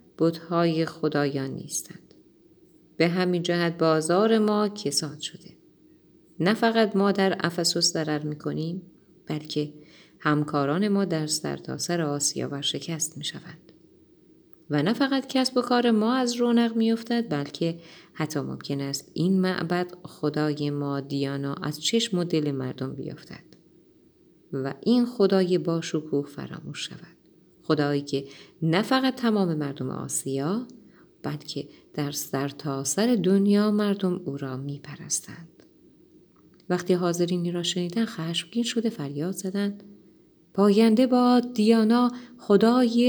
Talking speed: 120 wpm